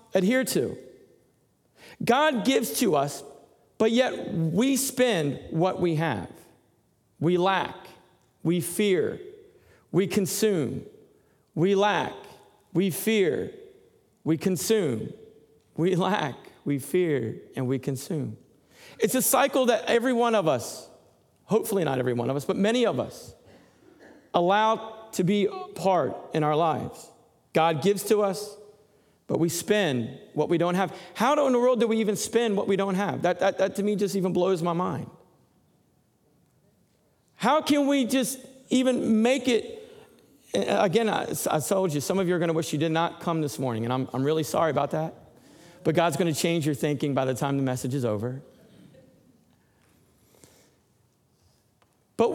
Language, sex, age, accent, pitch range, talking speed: English, male, 50-69, American, 160-225 Hz, 155 wpm